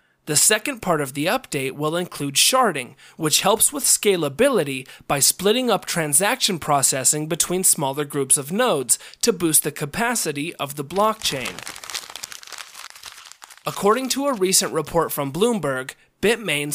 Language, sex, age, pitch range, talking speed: English, male, 30-49, 145-210 Hz, 135 wpm